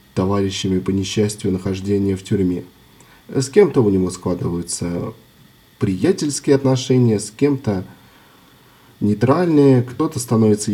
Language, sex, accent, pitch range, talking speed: Russian, male, native, 110-150 Hz, 100 wpm